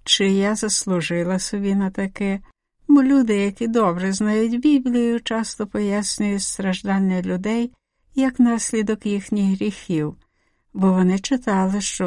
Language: Ukrainian